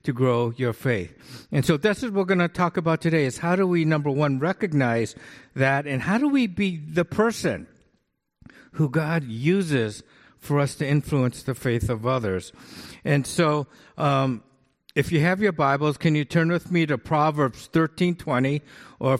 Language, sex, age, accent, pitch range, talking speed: English, male, 50-69, American, 130-165 Hz, 180 wpm